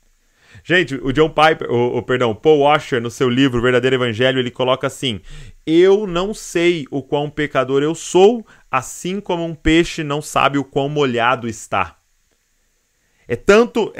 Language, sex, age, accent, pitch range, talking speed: Portuguese, male, 30-49, Brazilian, 125-175 Hz, 150 wpm